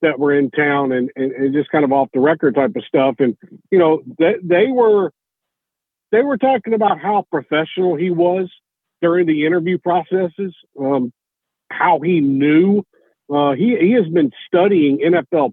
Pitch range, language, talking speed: 150-200 Hz, English, 175 wpm